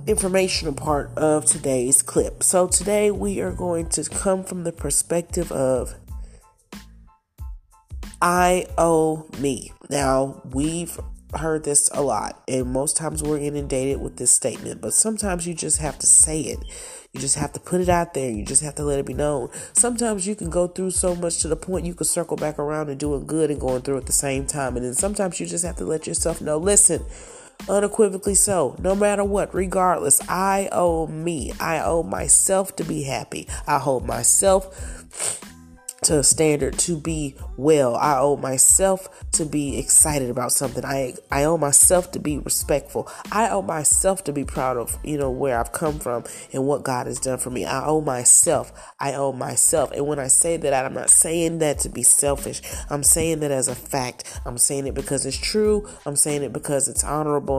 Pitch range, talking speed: 135-175 Hz, 195 wpm